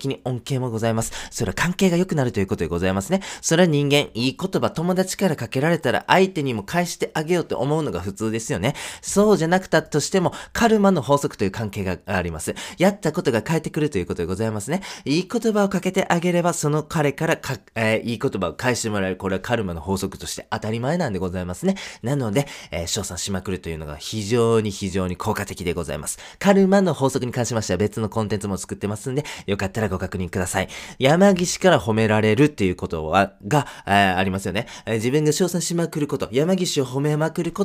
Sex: male